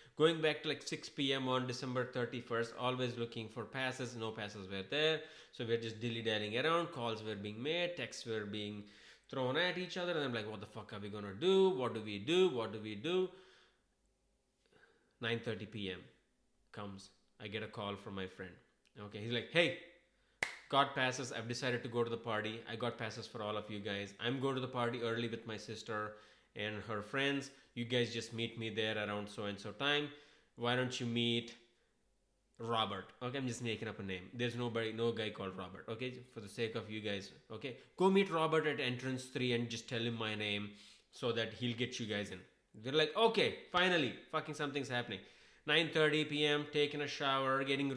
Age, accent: 20-39, Indian